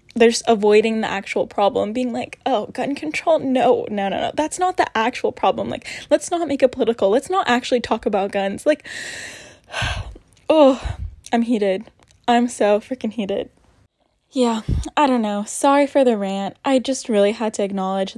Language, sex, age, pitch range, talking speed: English, female, 10-29, 205-255 Hz, 175 wpm